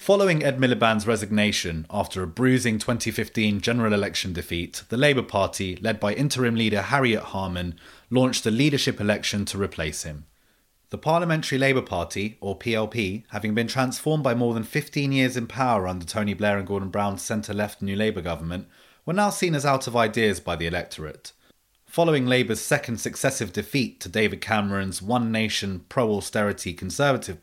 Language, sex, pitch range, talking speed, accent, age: English, male, 95-125 Hz, 160 wpm, British, 30-49